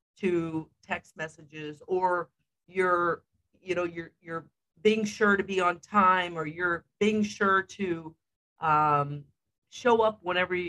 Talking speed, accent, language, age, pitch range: 135 wpm, American, English, 50-69, 155-200 Hz